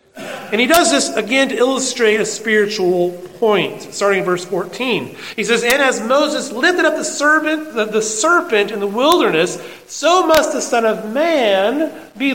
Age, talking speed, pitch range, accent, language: 40-59, 165 wpm, 175-275 Hz, American, English